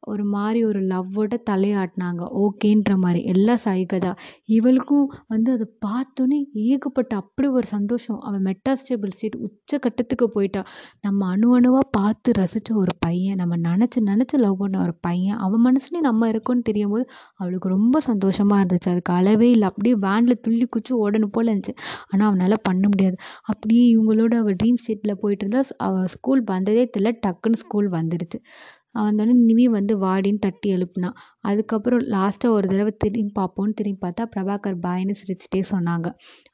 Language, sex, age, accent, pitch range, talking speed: Tamil, female, 20-39, native, 195-235 Hz, 150 wpm